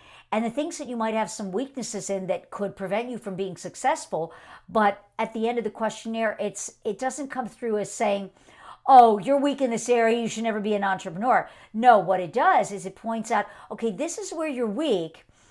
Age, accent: 50-69, American